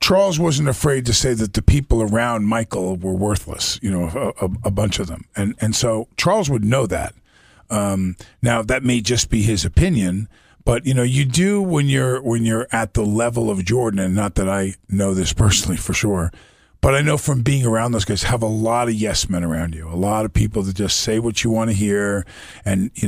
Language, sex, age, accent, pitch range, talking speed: English, male, 40-59, American, 95-125 Hz, 230 wpm